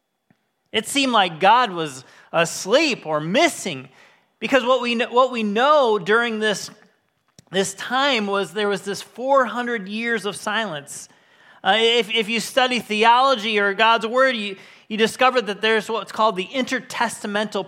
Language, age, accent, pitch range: English, 30-49, American, 195-255 Hz